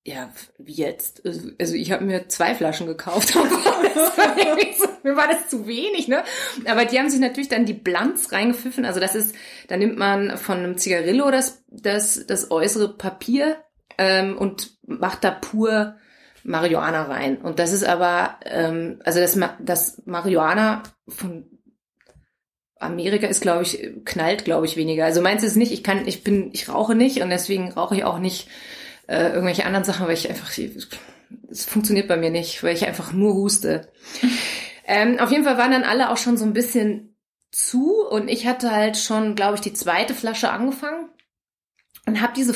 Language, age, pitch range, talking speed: German, 30-49, 190-255 Hz, 180 wpm